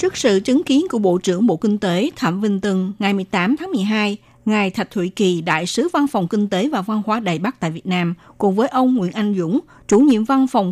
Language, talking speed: Vietnamese, 250 wpm